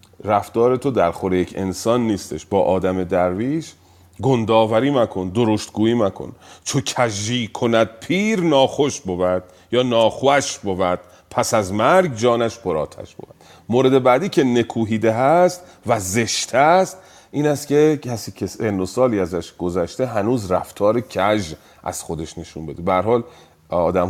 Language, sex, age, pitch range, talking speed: Persian, male, 40-59, 90-125 Hz, 130 wpm